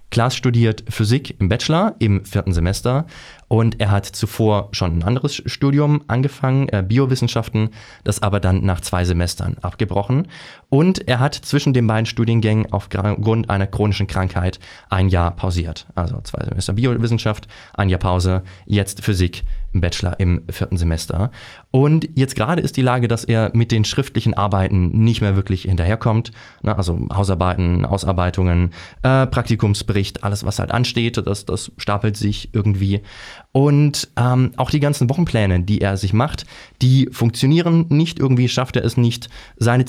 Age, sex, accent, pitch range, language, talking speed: 20-39, male, German, 100-125 Hz, German, 155 wpm